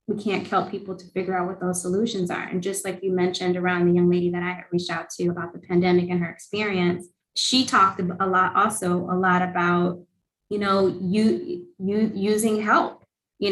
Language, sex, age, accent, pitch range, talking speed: English, female, 20-39, American, 180-210 Hz, 210 wpm